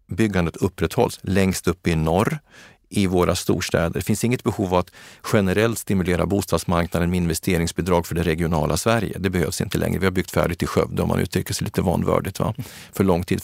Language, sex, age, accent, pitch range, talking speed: Swedish, male, 40-59, native, 90-105 Hz, 195 wpm